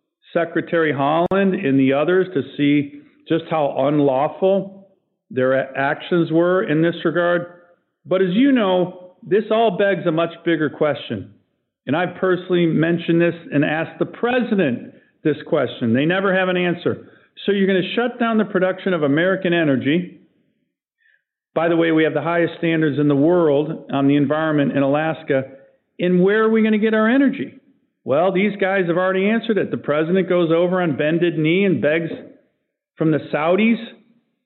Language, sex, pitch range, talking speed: English, male, 160-205 Hz, 170 wpm